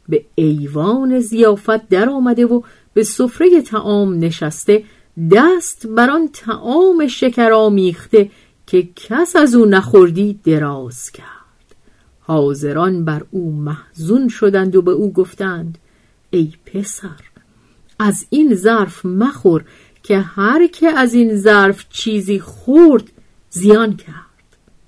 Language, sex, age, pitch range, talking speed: Persian, female, 50-69, 165-230 Hz, 115 wpm